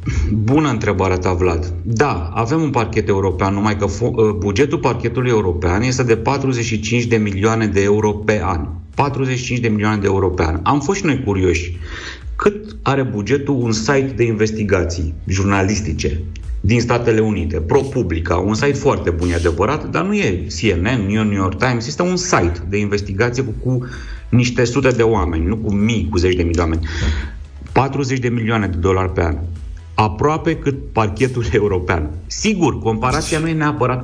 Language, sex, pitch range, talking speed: Romanian, male, 95-115 Hz, 165 wpm